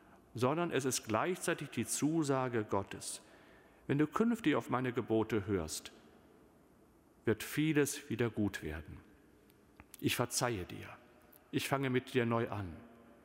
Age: 40-59